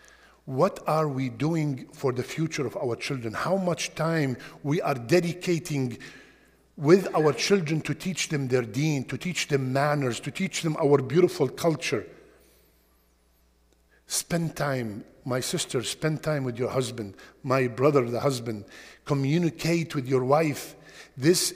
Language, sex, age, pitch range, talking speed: English, male, 50-69, 120-160 Hz, 145 wpm